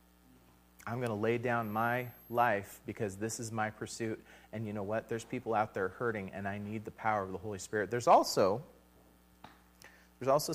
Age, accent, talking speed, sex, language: 30-49, American, 195 wpm, male, English